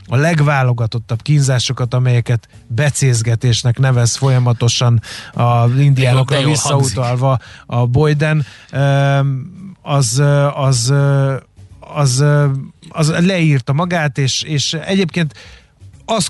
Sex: male